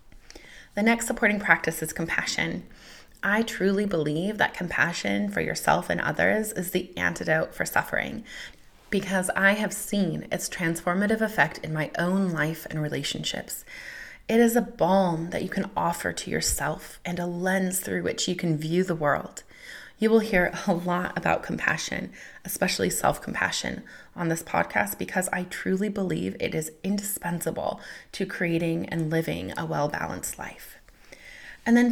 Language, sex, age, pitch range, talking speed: English, female, 20-39, 160-220 Hz, 150 wpm